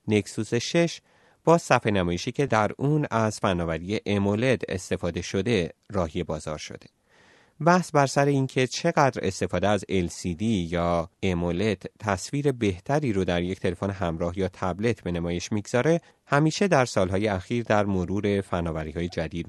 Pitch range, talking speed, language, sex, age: 90-125 Hz, 140 wpm, Persian, male, 30-49